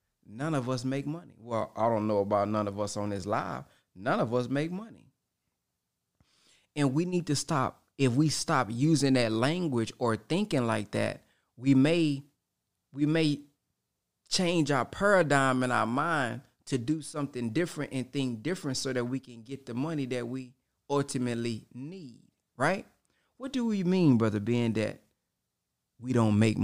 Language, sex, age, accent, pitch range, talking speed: English, male, 20-39, American, 110-140 Hz, 170 wpm